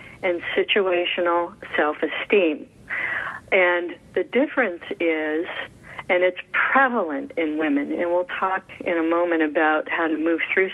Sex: female